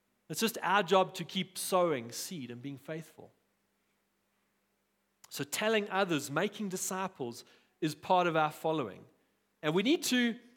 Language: English